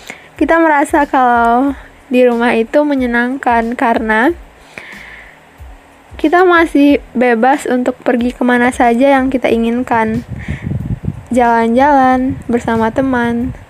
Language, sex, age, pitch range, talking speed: Indonesian, female, 10-29, 240-280 Hz, 90 wpm